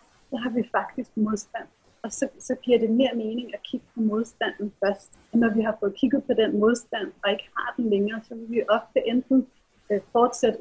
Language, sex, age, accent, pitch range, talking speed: Danish, female, 30-49, native, 210-245 Hz, 200 wpm